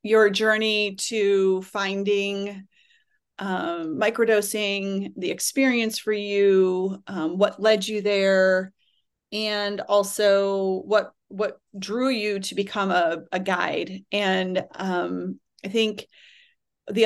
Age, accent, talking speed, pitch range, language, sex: 30-49, American, 110 wpm, 185-220 Hz, English, female